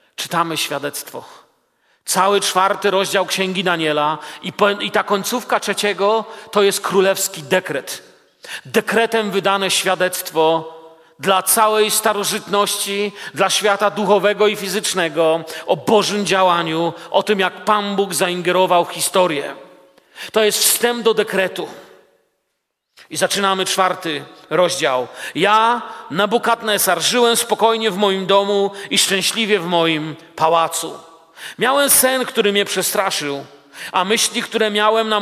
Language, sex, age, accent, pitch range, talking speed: Polish, male, 40-59, native, 180-215 Hz, 115 wpm